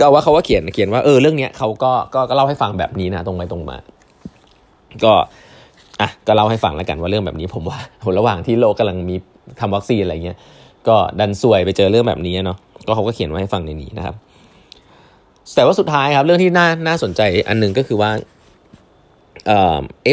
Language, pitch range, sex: Thai, 95-135 Hz, male